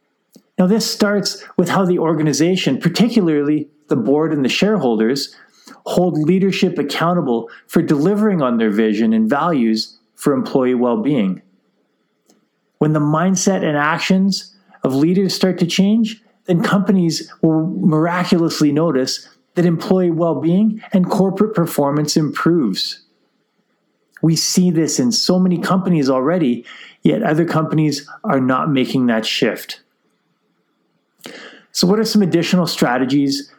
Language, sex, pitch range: English, male, 145-190 Hz